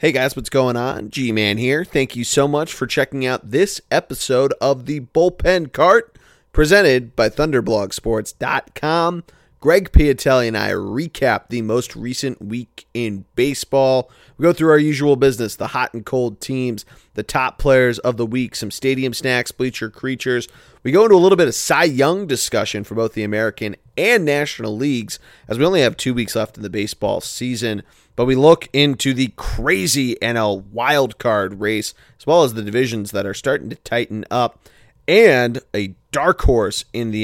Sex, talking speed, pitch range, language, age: male, 175 wpm, 110-135 Hz, English, 30-49